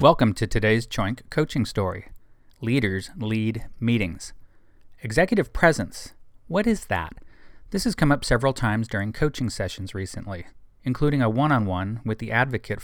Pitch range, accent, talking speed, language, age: 105-135 Hz, American, 140 wpm, English, 40-59